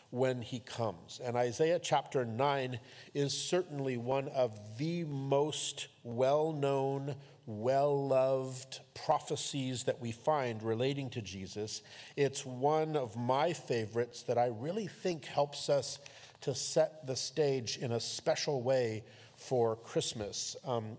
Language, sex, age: English, male, 50-69